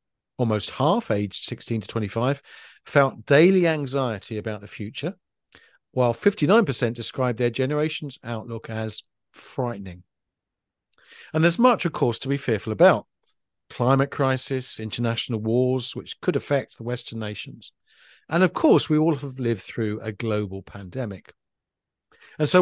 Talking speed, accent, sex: 140 wpm, British, male